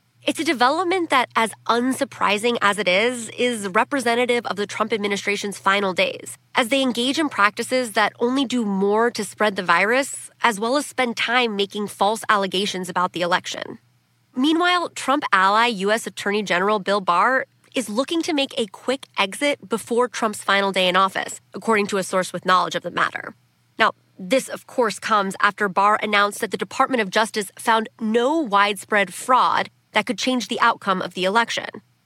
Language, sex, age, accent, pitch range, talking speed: English, female, 20-39, American, 200-255 Hz, 180 wpm